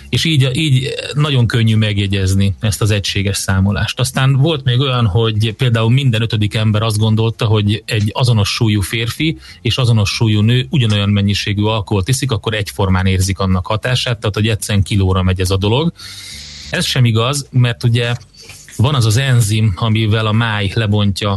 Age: 30-49